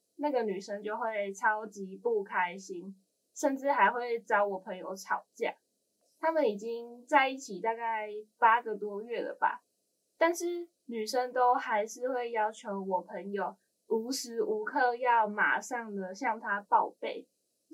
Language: Chinese